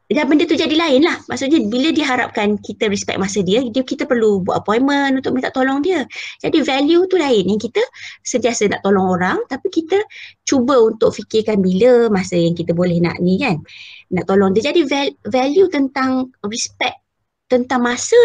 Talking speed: 180 wpm